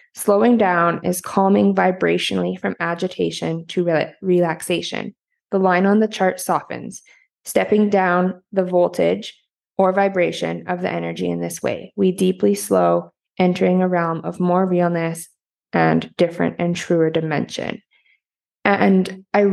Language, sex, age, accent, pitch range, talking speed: English, female, 20-39, American, 165-190 Hz, 130 wpm